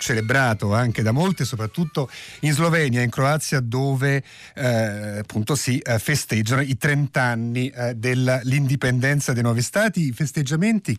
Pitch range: 115-145 Hz